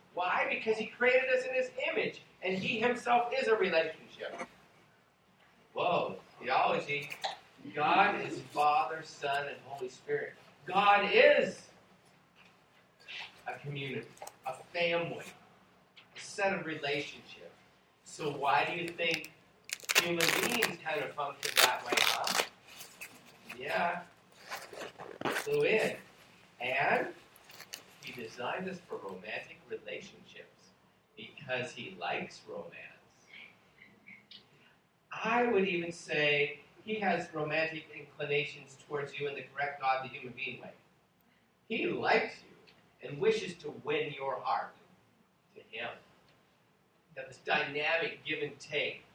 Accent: American